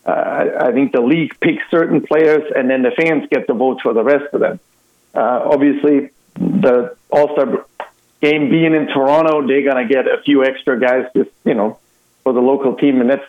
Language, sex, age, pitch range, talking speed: English, male, 50-69, 120-140 Hz, 205 wpm